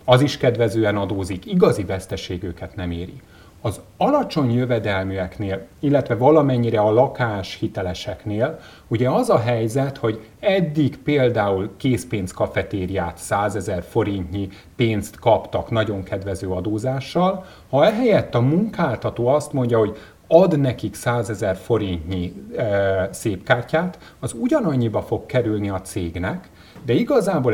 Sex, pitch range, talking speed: male, 95-135 Hz, 120 wpm